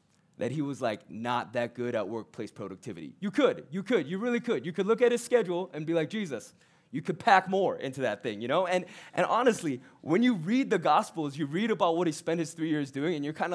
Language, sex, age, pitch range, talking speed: English, male, 20-39, 155-210 Hz, 255 wpm